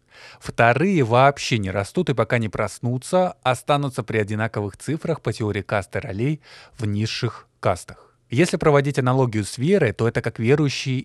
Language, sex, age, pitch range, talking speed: Russian, male, 20-39, 110-145 Hz, 150 wpm